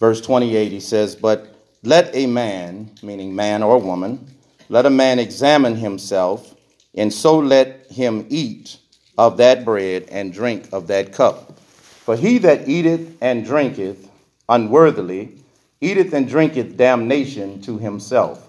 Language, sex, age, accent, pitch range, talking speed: English, male, 40-59, American, 110-160 Hz, 140 wpm